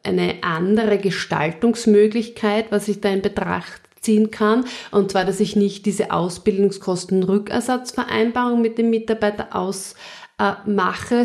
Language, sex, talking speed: German, female, 115 wpm